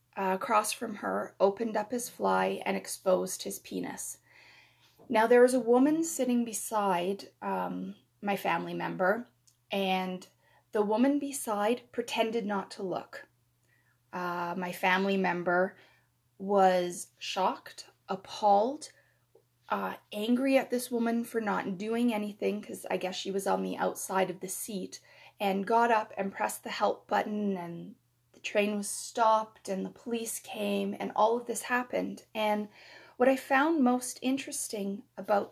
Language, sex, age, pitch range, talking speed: English, female, 20-39, 185-240 Hz, 145 wpm